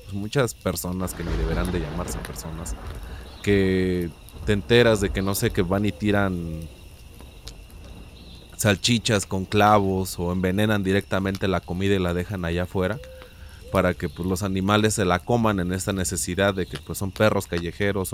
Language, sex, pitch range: Spanish, male, 90-105 Hz